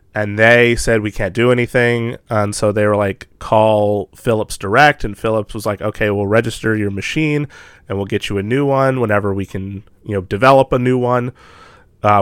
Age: 30-49